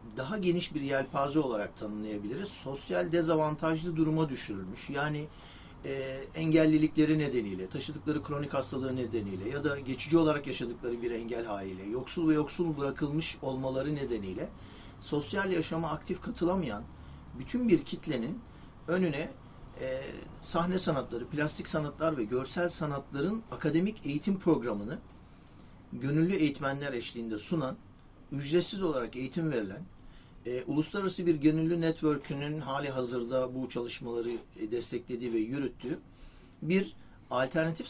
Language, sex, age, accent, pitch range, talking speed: Turkish, male, 60-79, native, 125-165 Hz, 115 wpm